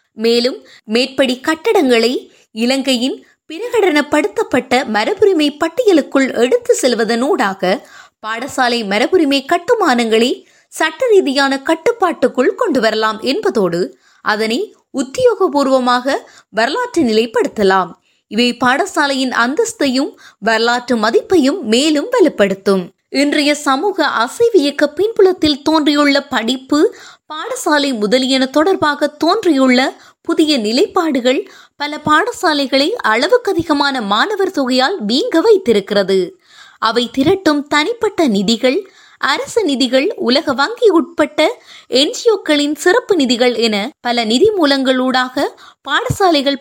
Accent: native